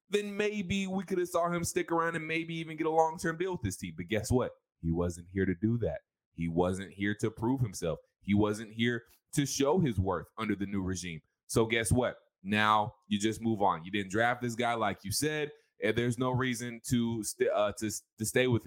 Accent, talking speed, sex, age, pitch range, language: American, 230 wpm, male, 20-39, 100-140 Hz, English